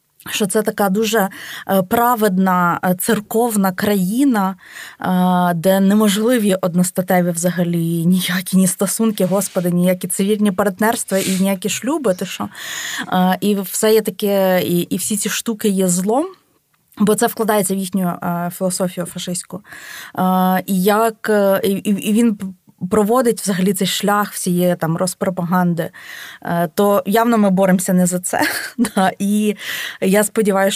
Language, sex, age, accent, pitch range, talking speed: Ukrainian, female, 20-39, native, 185-220 Hz, 125 wpm